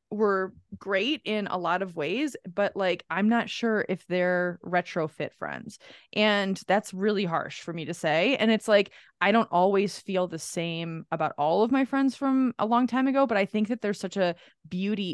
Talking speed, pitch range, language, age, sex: 200 wpm, 165-210 Hz, English, 20-39, female